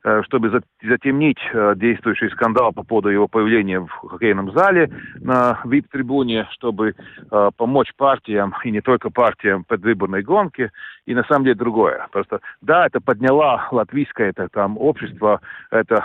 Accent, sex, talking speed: native, male, 135 wpm